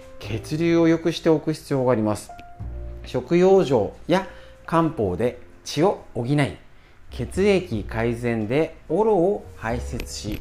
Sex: male